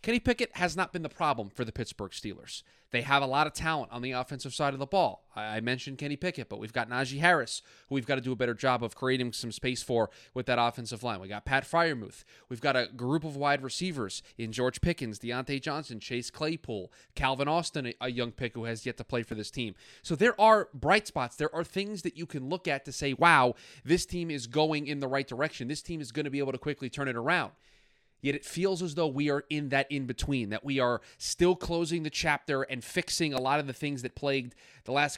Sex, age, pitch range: male, 20-39, 125-150 Hz